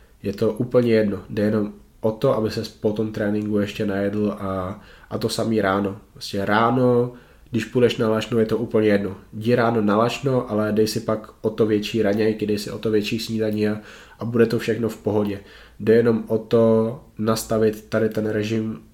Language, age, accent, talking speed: Czech, 20-39, native, 200 wpm